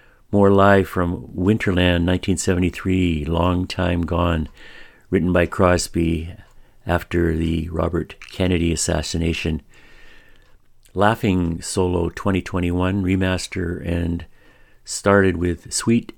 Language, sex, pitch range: English, male, 85-95 Hz